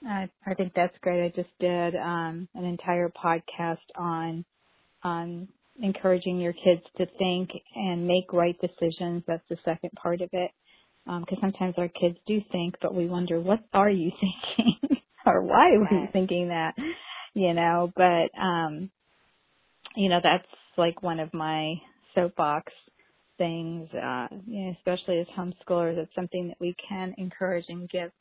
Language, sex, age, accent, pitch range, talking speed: English, female, 30-49, American, 175-195 Hz, 155 wpm